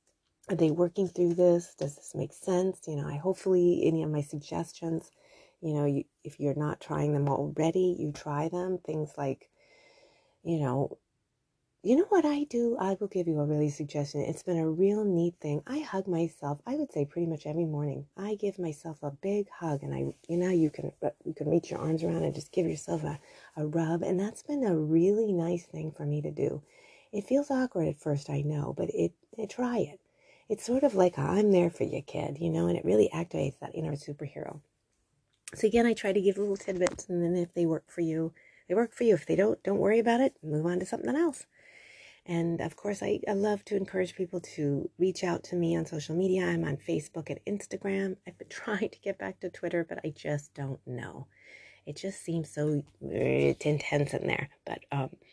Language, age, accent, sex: English, 30-49, American, female